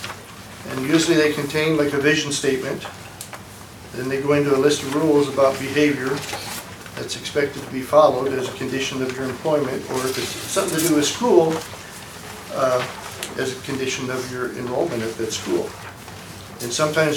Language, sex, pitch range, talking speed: English, male, 120-145 Hz, 170 wpm